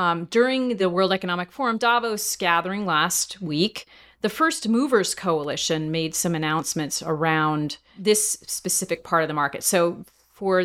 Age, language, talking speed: 40-59, English, 145 wpm